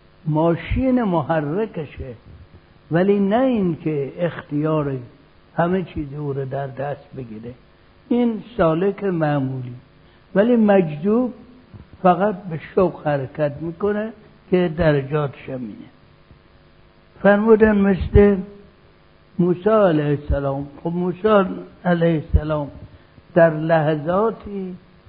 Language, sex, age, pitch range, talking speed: Persian, male, 60-79, 140-195 Hz, 90 wpm